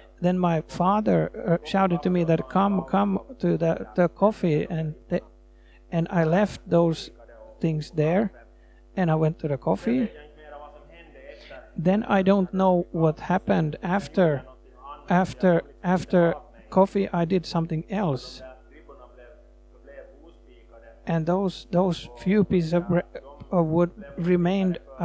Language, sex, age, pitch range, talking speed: Swedish, male, 50-69, 160-190 Hz, 125 wpm